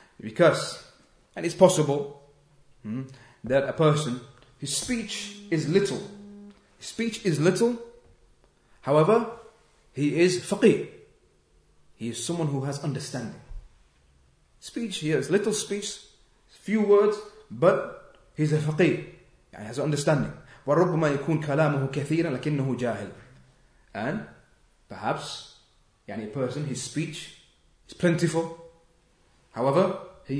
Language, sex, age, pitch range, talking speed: English, male, 30-49, 125-165 Hz, 105 wpm